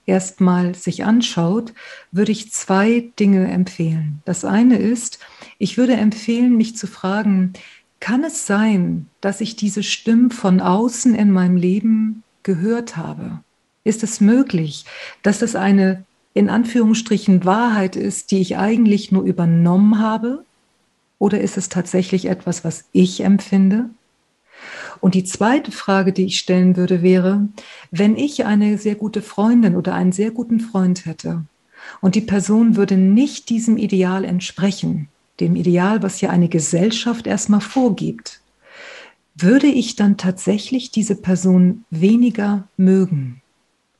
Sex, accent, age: female, German, 50-69